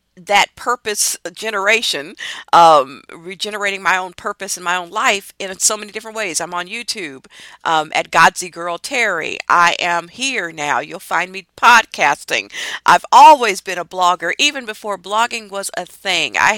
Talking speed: 165 wpm